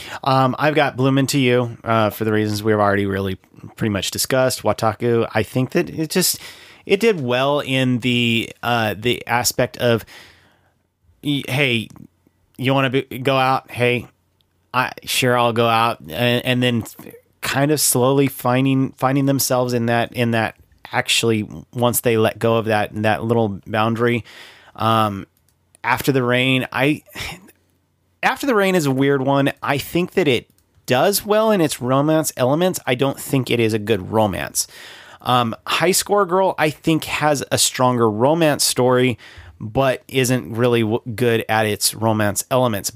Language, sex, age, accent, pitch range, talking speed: English, male, 30-49, American, 110-135 Hz, 160 wpm